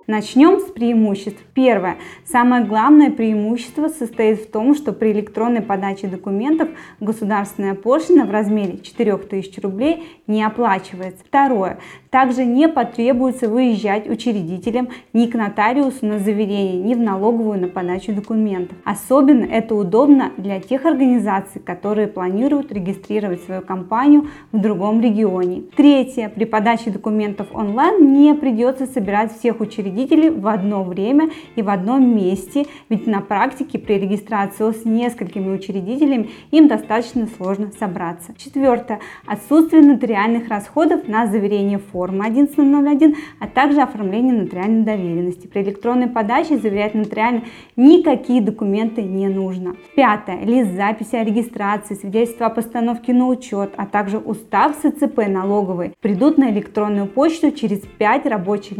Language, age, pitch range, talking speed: Russian, 20-39, 205-255 Hz, 130 wpm